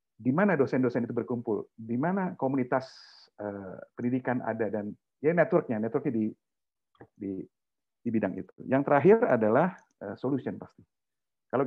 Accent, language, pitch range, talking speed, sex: native, Indonesian, 115-155 Hz, 140 wpm, male